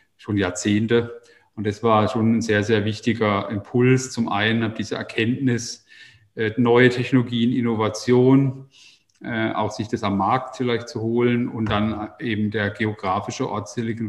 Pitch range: 105-120 Hz